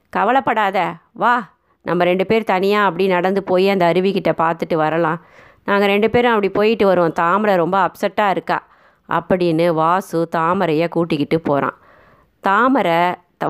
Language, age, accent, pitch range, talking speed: Tamil, 20-39, native, 170-205 Hz, 130 wpm